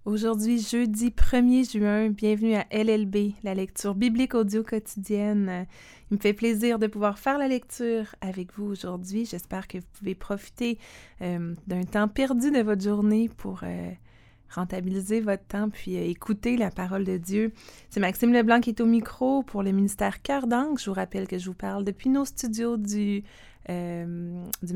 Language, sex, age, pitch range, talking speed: French, female, 30-49, 180-220 Hz, 175 wpm